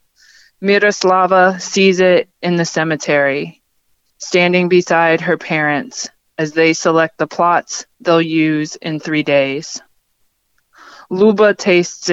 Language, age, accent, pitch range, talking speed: English, 20-39, American, 155-180 Hz, 110 wpm